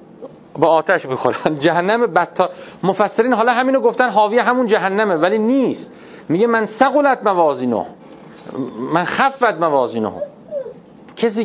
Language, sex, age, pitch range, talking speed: Persian, male, 40-59, 155-225 Hz, 105 wpm